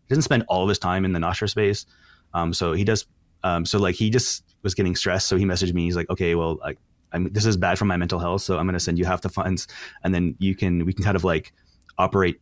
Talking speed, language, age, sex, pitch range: 285 wpm, English, 30-49, male, 85-105 Hz